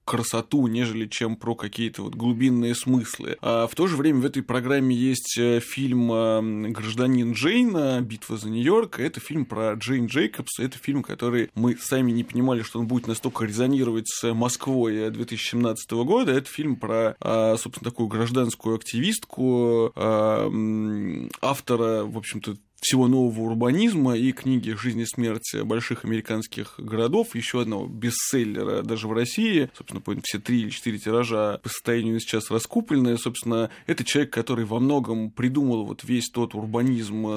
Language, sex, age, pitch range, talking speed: Russian, male, 20-39, 115-130 Hz, 150 wpm